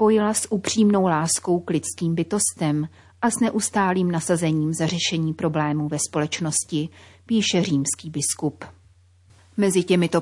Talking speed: 125 wpm